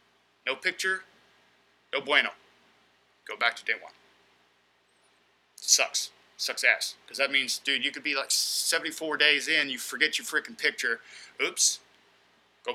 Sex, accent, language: male, American, English